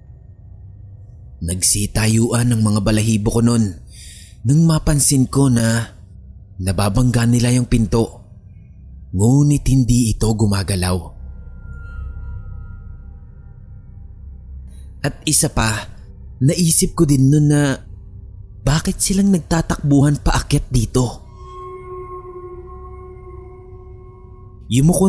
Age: 30-49